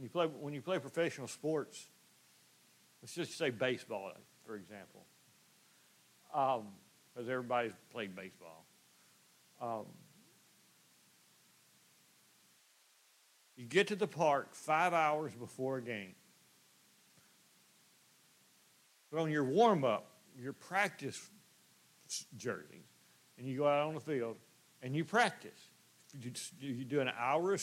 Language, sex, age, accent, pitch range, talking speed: English, male, 60-79, American, 125-170 Hz, 110 wpm